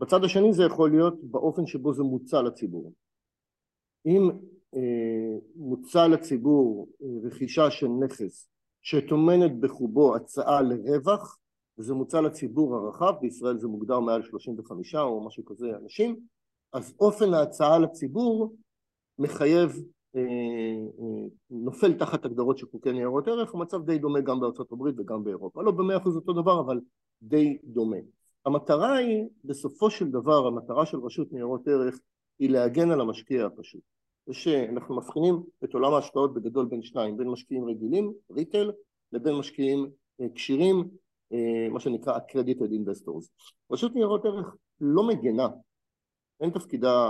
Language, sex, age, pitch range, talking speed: Hebrew, male, 50-69, 120-170 Hz, 135 wpm